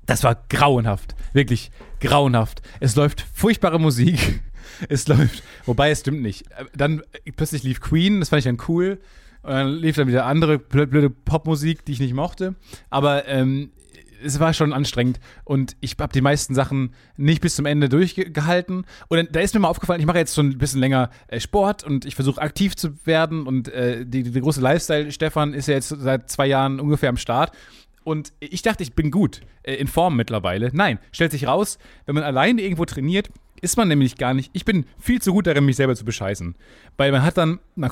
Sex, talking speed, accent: male, 200 wpm, German